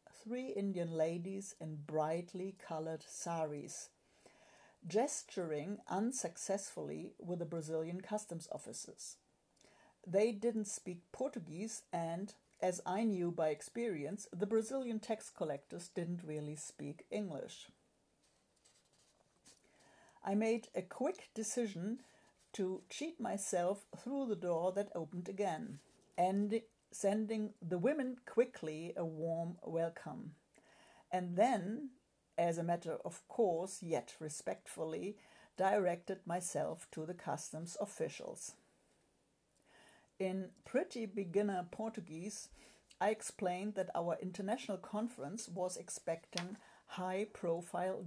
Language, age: English, 60-79